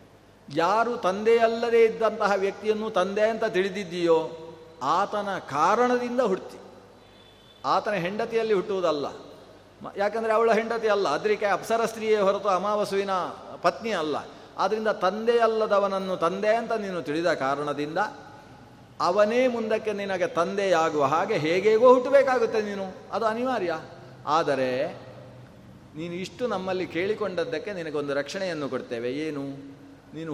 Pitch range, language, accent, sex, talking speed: 155-215 Hz, Kannada, native, male, 100 wpm